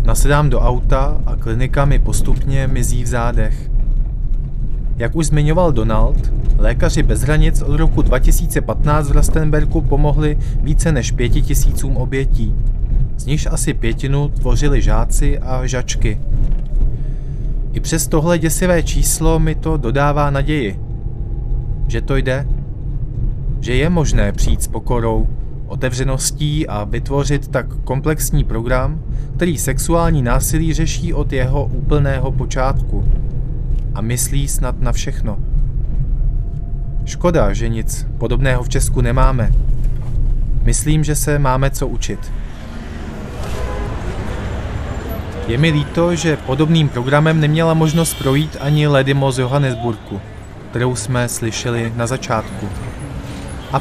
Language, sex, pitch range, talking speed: Czech, male, 115-145 Hz, 115 wpm